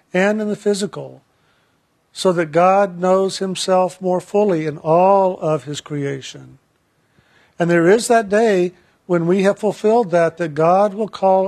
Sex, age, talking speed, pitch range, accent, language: male, 50-69, 155 wpm, 160-200 Hz, American, English